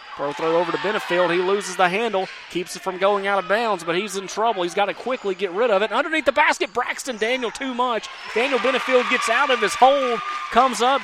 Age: 30-49